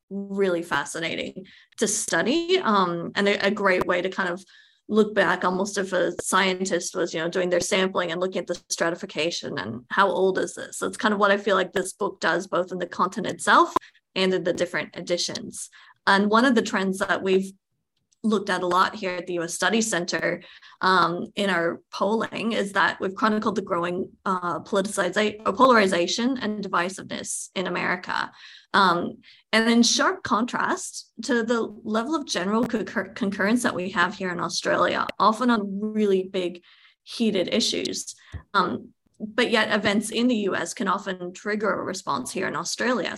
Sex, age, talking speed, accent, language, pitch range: female, 20-39, 180 wpm, American, English, 180-215 Hz